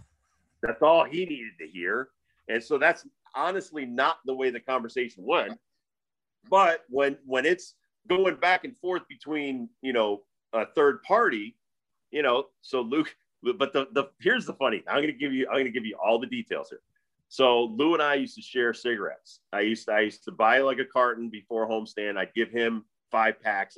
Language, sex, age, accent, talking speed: English, male, 40-59, American, 200 wpm